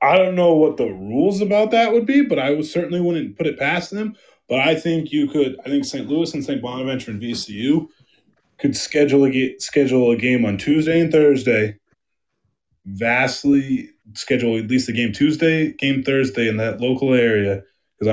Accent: American